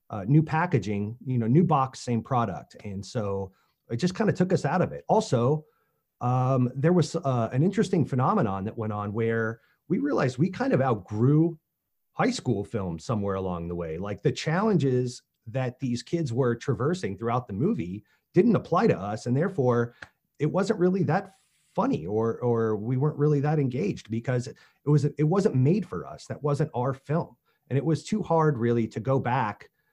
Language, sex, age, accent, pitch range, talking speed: English, male, 30-49, American, 110-150 Hz, 190 wpm